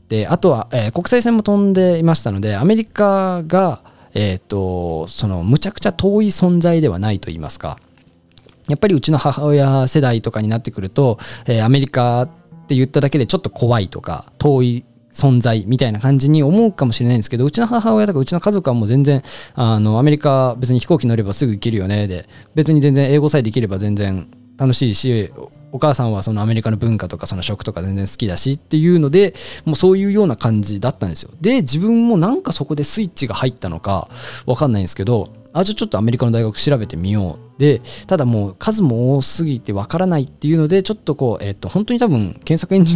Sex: male